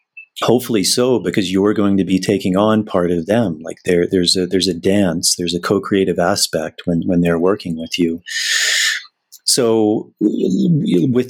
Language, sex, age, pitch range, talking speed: English, male, 30-49, 90-105 Hz, 165 wpm